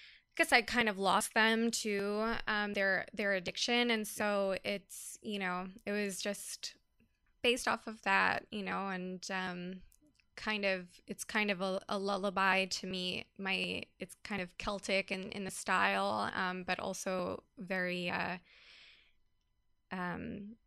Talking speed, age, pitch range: 150 wpm, 10-29, 185-215 Hz